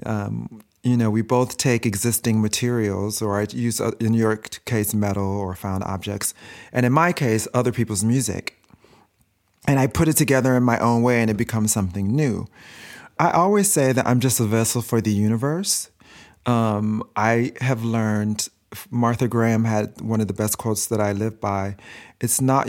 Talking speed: 180 wpm